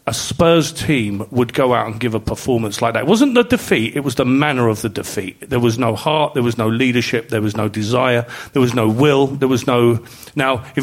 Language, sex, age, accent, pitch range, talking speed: English, male, 40-59, British, 120-150 Hz, 245 wpm